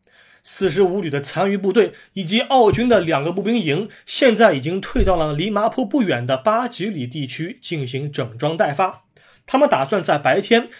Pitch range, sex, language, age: 145-235 Hz, male, Chinese, 20-39